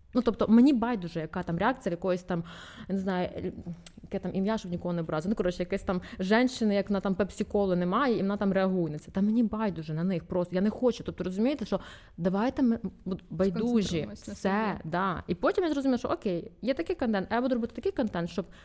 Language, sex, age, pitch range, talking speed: Ukrainian, female, 20-39, 180-245 Hz, 220 wpm